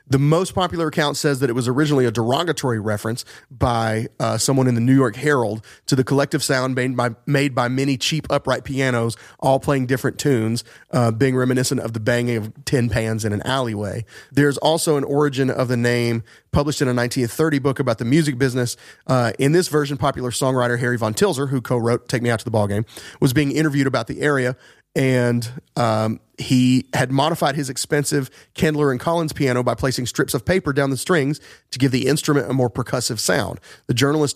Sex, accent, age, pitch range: male, American, 30-49, 115-140 Hz